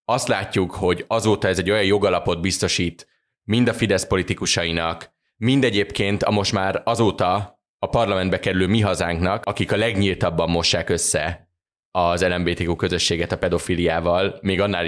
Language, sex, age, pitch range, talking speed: Hungarian, male, 20-39, 90-105 Hz, 145 wpm